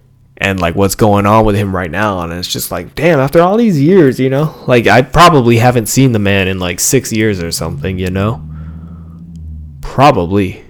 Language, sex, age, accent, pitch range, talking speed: English, male, 20-39, American, 95-130 Hz, 200 wpm